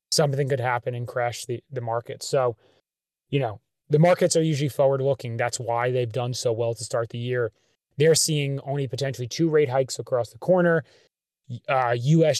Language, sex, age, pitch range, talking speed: English, male, 20-39, 125-150 Hz, 190 wpm